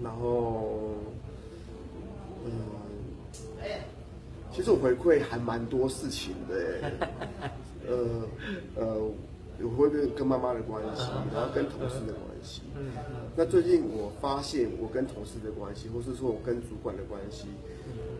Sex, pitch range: male, 110-125 Hz